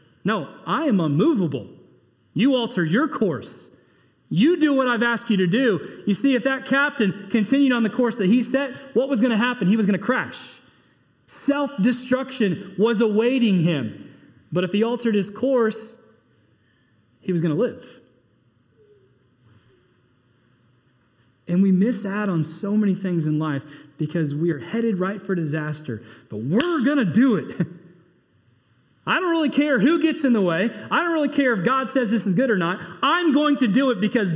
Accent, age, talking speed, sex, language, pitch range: American, 30-49, 180 wpm, male, English, 140-230 Hz